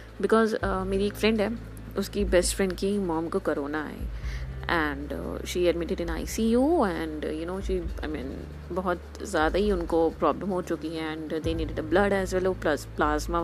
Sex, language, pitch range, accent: female, Hindi, 165-210 Hz, native